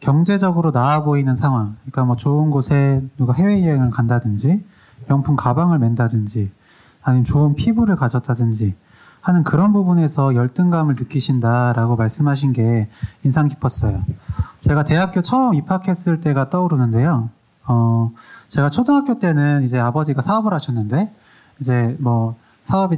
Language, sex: Korean, male